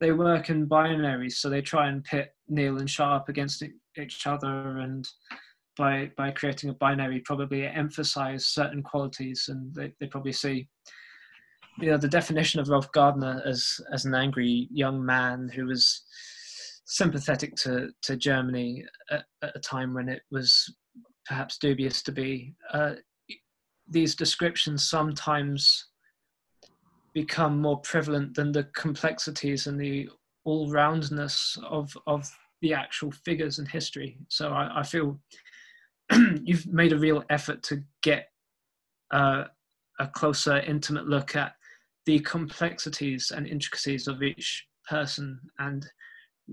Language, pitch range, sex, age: English, 135-155 Hz, male, 20-39